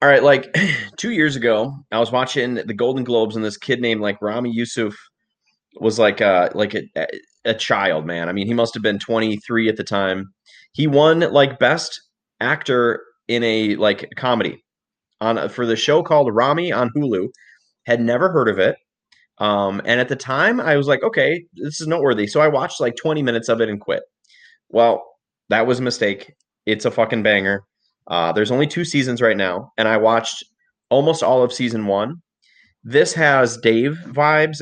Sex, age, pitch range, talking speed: male, 30-49, 110-135 Hz, 190 wpm